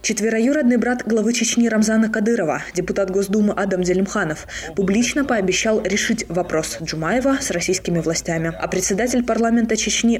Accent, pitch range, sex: native, 175-225 Hz, female